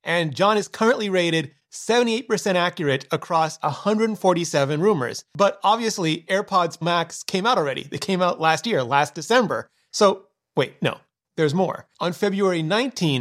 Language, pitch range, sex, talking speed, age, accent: English, 150-195 Hz, male, 145 wpm, 30-49, American